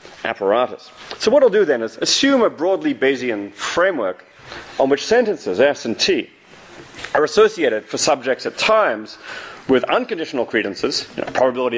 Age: 30-49